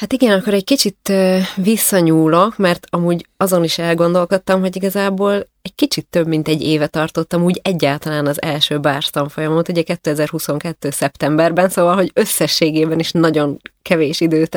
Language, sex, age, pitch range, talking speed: Hungarian, female, 20-39, 150-180 Hz, 145 wpm